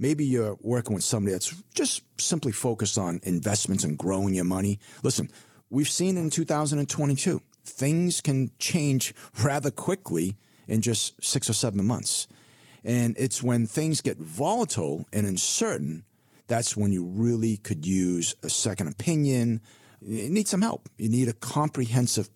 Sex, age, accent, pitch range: male, 40-59, American, 100-135 Hz